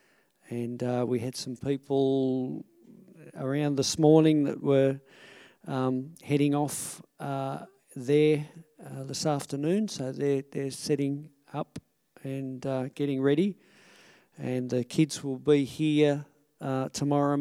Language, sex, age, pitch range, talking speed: English, male, 50-69, 130-155 Hz, 125 wpm